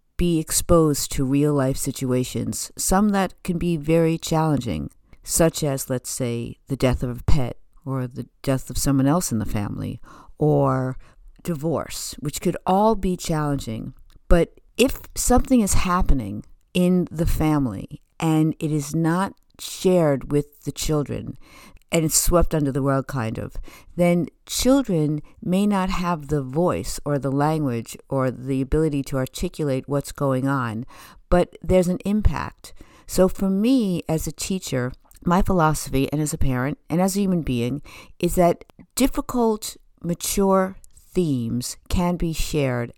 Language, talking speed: English, 150 wpm